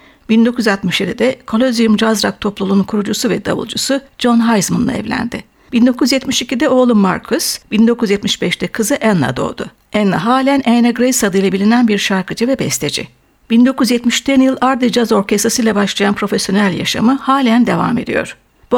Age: 60-79